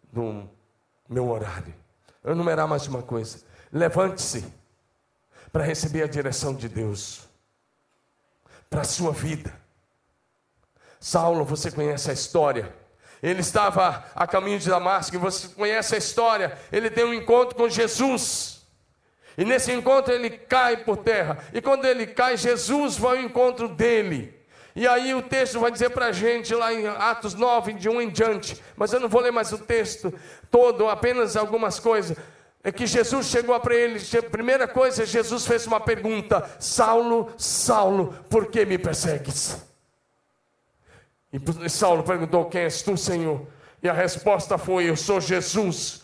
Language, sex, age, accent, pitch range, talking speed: Portuguese, male, 40-59, Brazilian, 160-230 Hz, 150 wpm